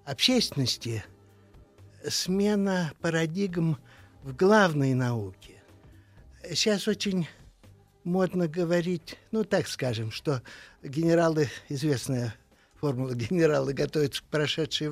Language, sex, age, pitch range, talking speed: Russian, male, 60-79, 125-170 Hz, 85 wpm